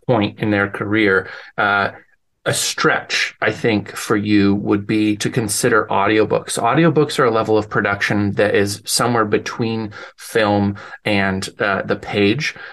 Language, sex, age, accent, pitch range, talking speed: English, male, 30-49, American, 100-125 Hz, 145 wpm